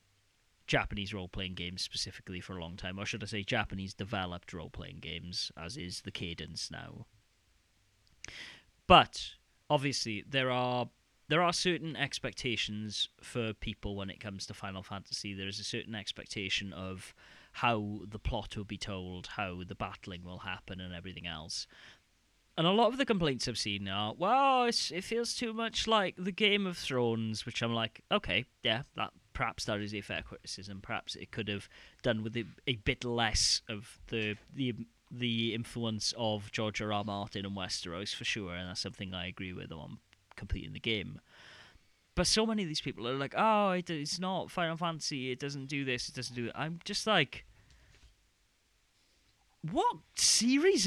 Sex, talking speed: male, 175 wpm